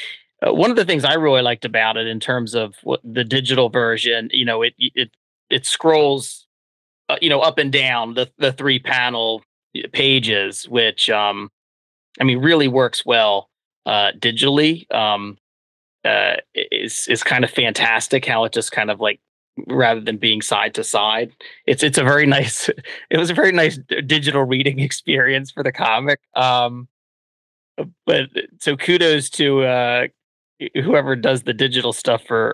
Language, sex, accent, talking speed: English, male, American, 165 wpm